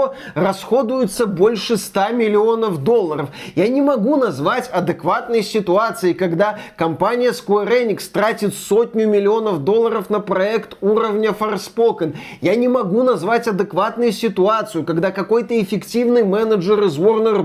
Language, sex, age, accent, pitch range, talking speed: Russian, male, 20-39, native, 190-230 Hz, 120 wpm